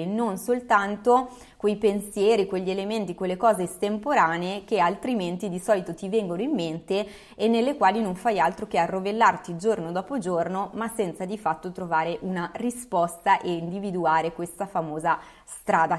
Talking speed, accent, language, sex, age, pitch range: 150 wpm, native, Italian, female, 20-39, 180-220 Hz